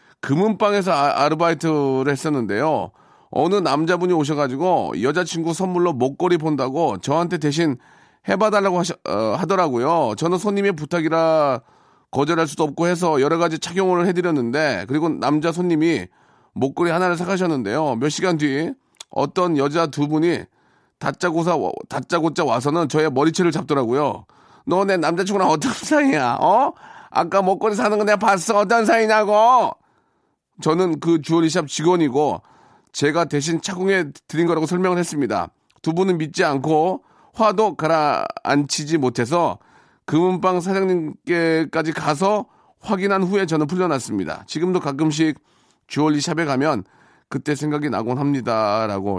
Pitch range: 145-180 Hz